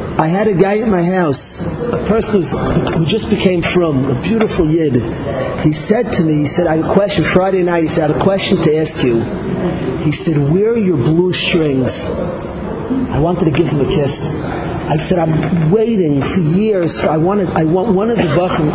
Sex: male